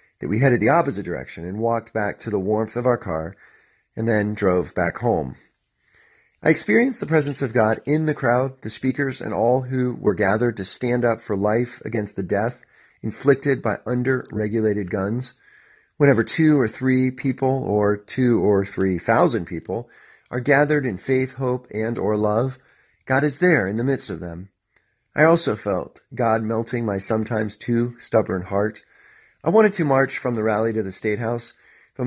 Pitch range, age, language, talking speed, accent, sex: 105-135 Hz, 40-59, English, 180 wpm, American, male